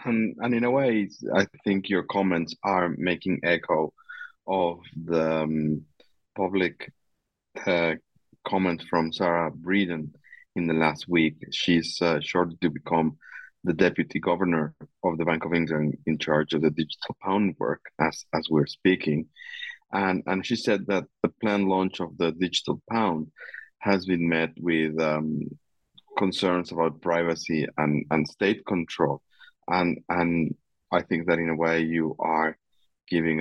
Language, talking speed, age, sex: English, 150 wpm, 30-49, male